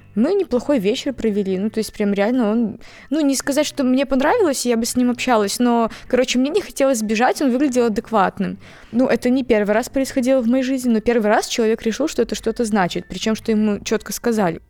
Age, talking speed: 20-39, 215 wpm